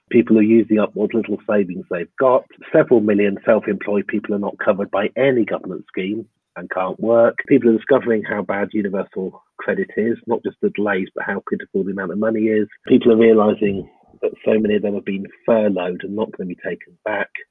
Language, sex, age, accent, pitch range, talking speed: English, male, 30-49, British, 105-125 Hz, 210 wpm